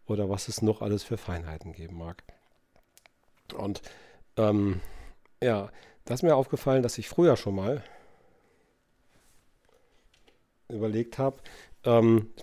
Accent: German